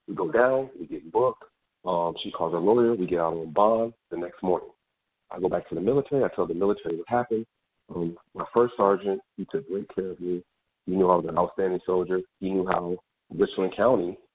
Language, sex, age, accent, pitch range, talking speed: English, male, 40-59, American, 90-115 Hz, 220 wpm